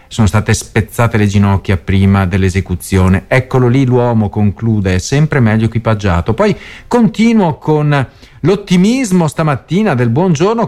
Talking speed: 120 wpm